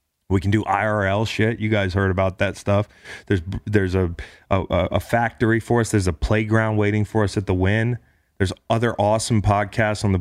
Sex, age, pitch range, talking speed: male, 30-49, 95-110 Hz, 200 wpm